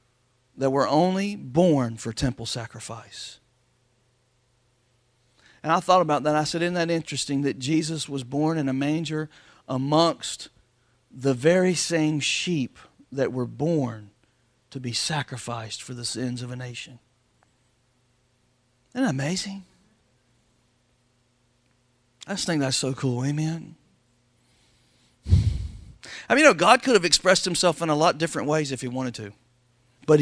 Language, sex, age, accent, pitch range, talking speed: English, male, 40-59, American, 125-155 Hz, 140 wpm